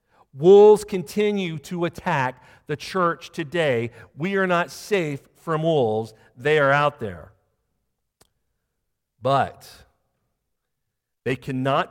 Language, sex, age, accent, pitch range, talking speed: English, male, 50-69, American, 135-190 Hz, 100 wpm